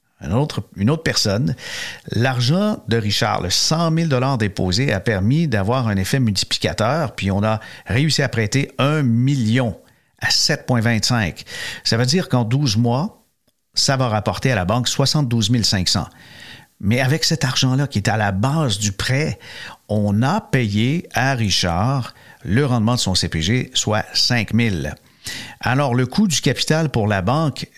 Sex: male